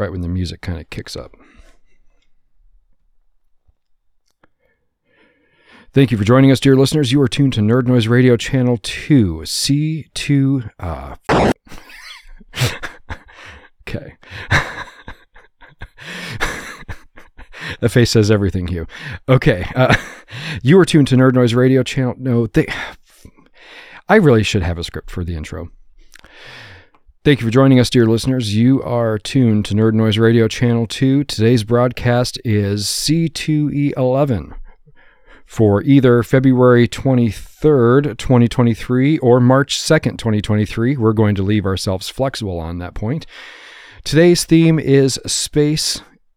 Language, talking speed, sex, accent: English, 125 wpm, male, American